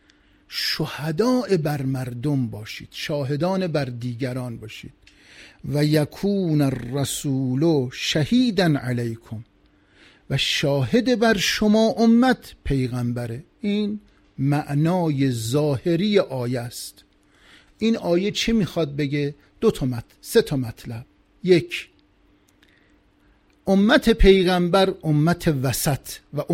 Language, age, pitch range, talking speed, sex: Persian, 50-69, 120-190 Hz, 90 wpm, male